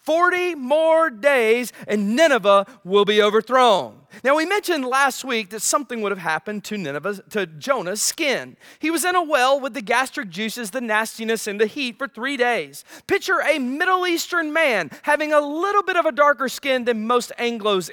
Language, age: English, 40-59